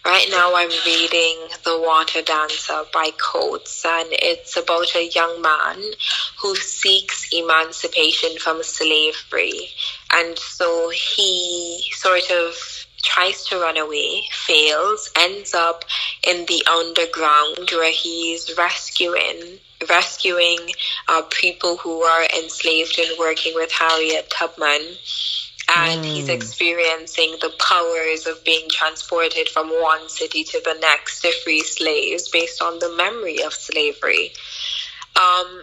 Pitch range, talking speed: 160-185 Hz, 125 wpm